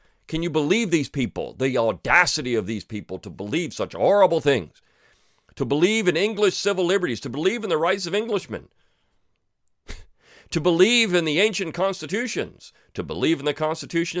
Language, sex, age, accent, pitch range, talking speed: English, male, 40-59, American, 105-155 Hz, 165 wpm